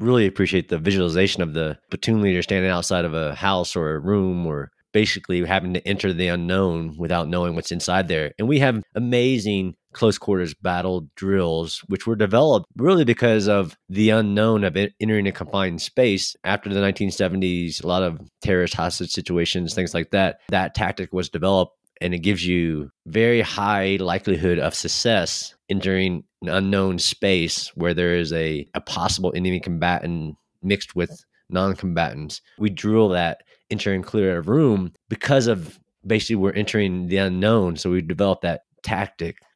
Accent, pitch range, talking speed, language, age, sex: American, 90-100 Hz, 165 wpm, English, 30-49, male